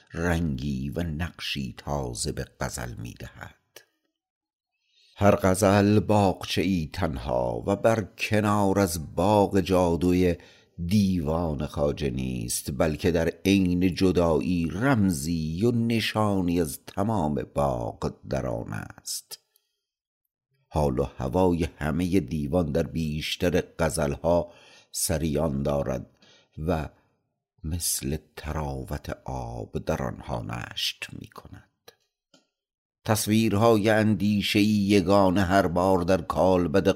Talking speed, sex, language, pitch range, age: 95 wpm, male, Persian, 75-95 Hz, 50-69